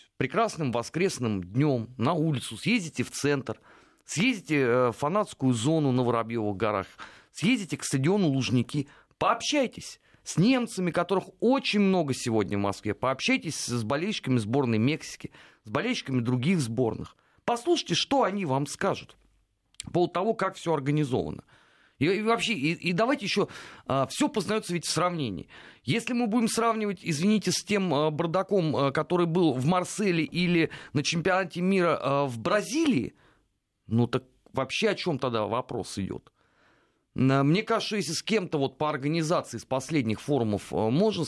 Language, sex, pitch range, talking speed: Russian, male, 115-185 Hz, 140 wpm